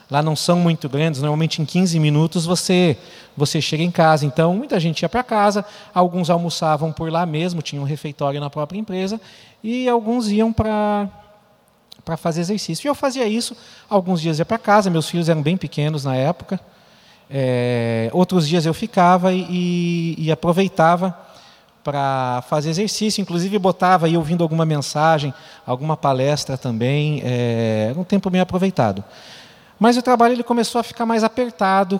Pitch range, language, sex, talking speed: 150-190 Hz, Portuguese, male, 165 wpm